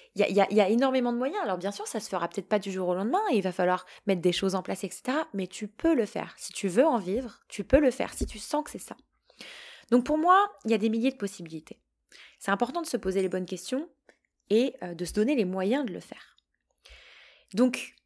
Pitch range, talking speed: 200-275 Hz, 260 wpm